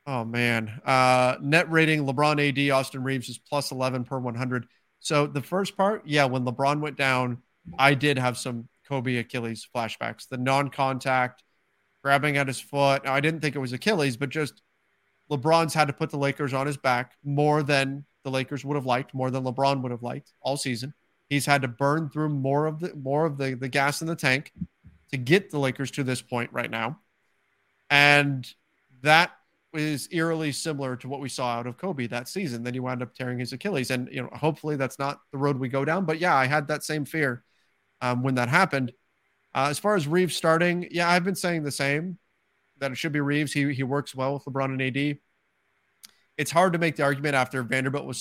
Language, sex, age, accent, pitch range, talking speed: English, male, 30-49, American, 130-150 Hz, 210 wpm